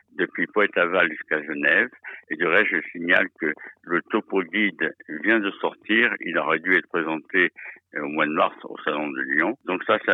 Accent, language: French, French